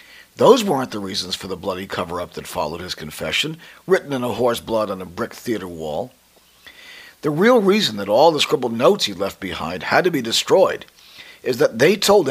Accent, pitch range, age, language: American, 115-170 Hz, 50-69, English